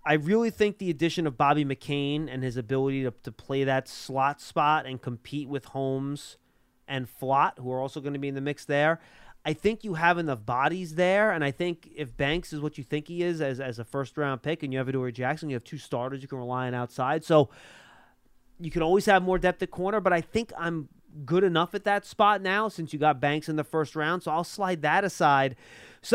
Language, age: English, 30-49